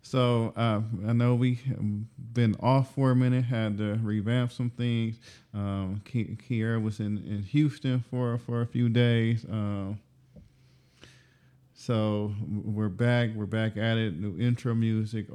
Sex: male